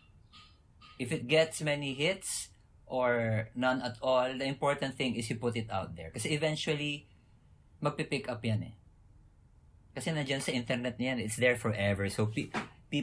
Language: English